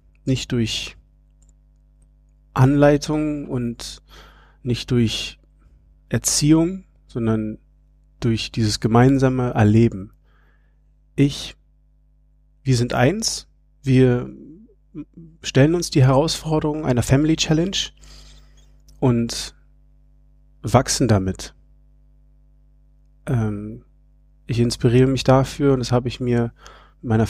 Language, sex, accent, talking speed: German, male, German, 85 wpm